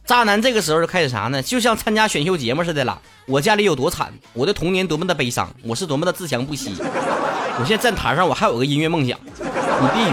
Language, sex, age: Chinese, male, 30-49